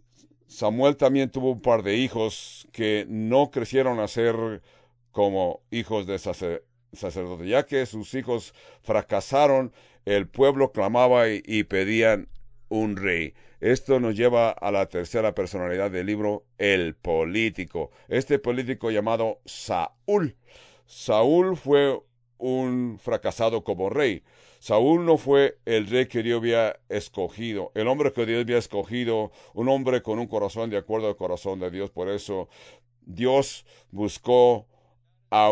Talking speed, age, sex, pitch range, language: 135 wpm, 60-79, male, 105-130 Hz, English